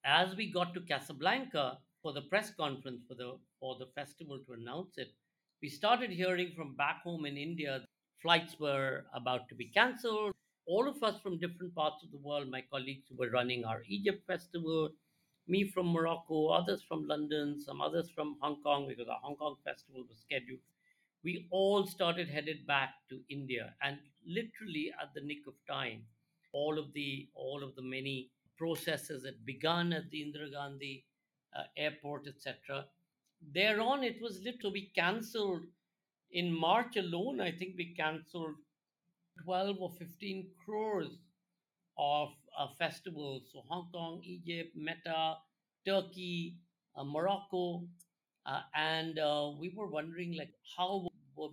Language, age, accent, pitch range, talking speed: Hindi, 50-69, native, 140-180 Hz, 160 wpm